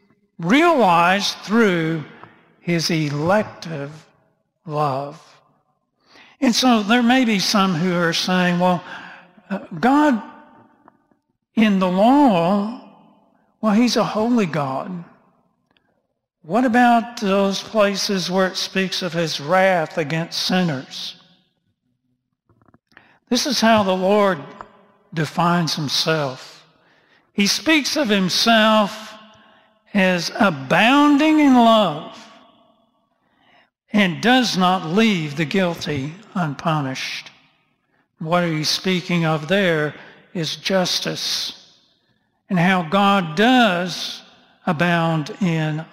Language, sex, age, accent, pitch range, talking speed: English, male, 60-79, American, 170-220 Hz, 95 wpm